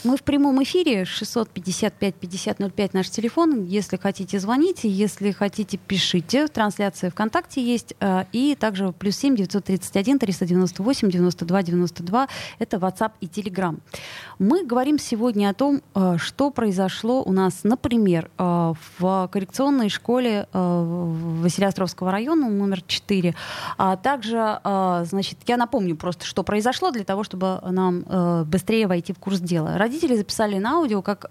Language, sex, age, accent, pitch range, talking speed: Russian, female, 20-39, native, 185-225 Hz, 125 wpm